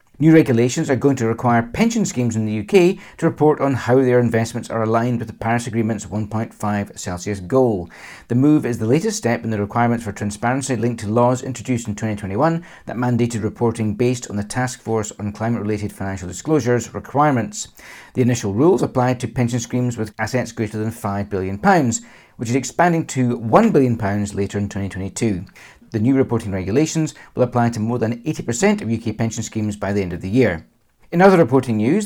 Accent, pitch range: British, 105-130 Hz